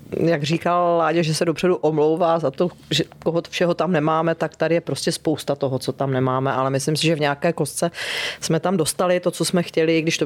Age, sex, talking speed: 30-49, female, 235 wpm